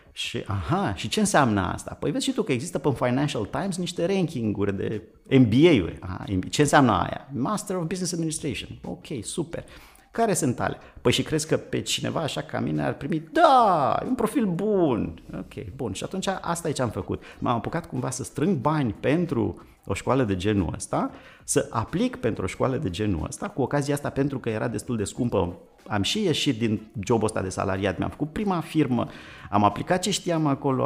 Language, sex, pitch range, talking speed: Romanian, male, 100-150 Hz, 200 wpm